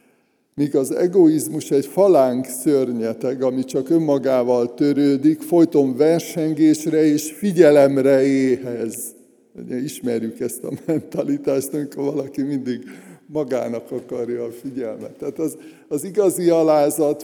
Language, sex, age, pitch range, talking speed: Hungarian, male, 50-69, 125-150 Hz, 105 wpm